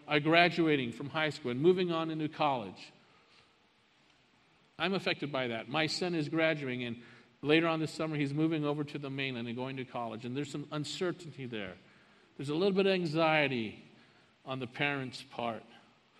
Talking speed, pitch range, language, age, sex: 180 wpm, 135-185 Hz, English, 50-69, male